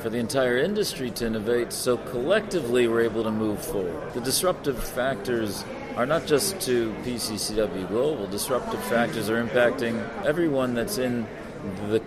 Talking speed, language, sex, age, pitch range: 150 wpm, English, male, 40-59, 110-135 Hz